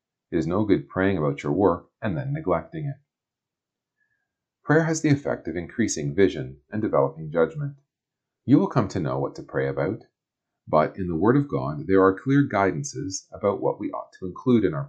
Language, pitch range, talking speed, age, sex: English, 75-120 Hz, 200 wpm, 40-59, male